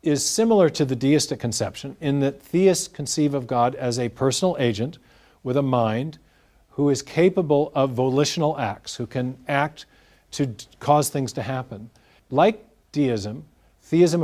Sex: male